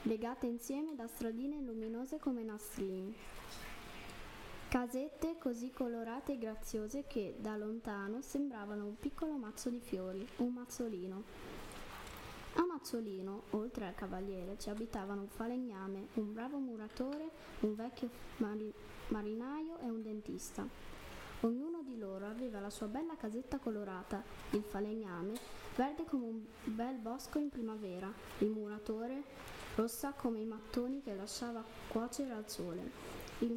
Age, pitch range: 10-29, 210-250 Hz